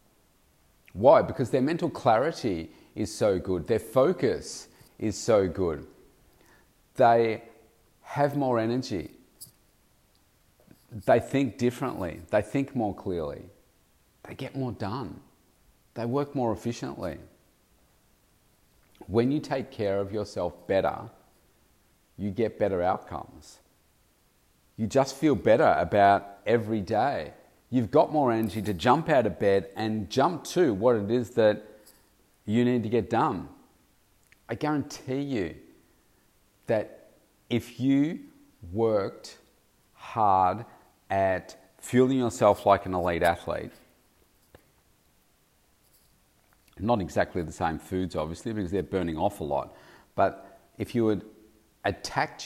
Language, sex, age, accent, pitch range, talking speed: English, male, 40-59, Australian, 100-125 Hz, 120 wpm